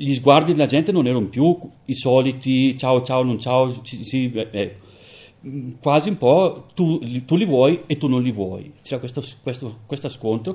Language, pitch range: Italian, 105-140 Hz